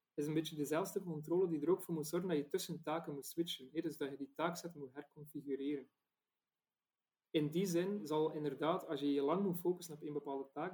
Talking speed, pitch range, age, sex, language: 220 wpm, 145-180 Hz, 30-49, male, Dutch